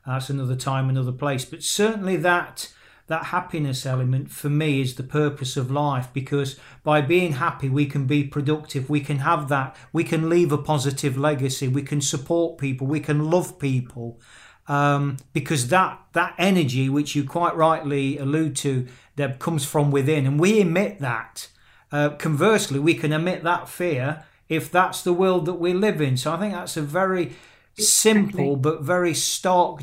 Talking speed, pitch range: 180 wpm, 140-170 Hz